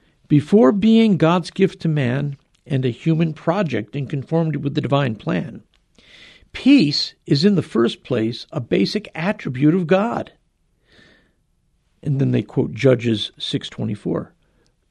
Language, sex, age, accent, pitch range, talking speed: English, male, 50-69, American, 135-190 Hz, 135 wpm